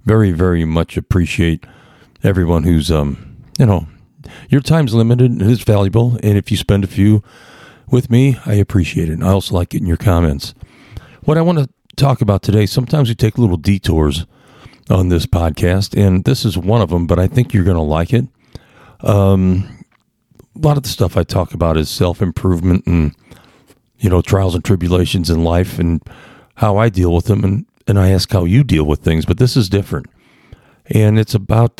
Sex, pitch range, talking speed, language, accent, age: male, 90-120 Hz, 190 wpm, English, American, 50-69